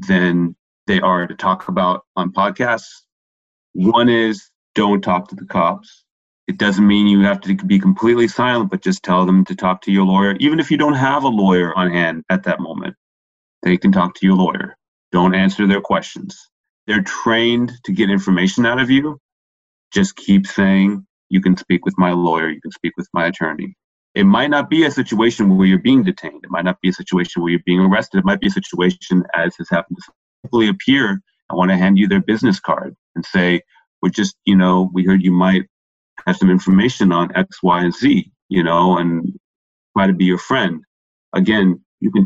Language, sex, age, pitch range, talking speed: English, male, 30-49, 90-115 Hz, 205 wpm